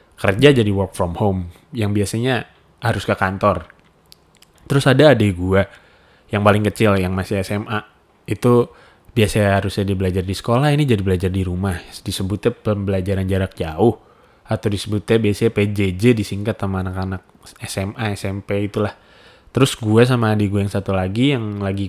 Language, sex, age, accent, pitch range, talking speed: Indonesian, male, 20-39, native, 95-120 Hz, 155 wpm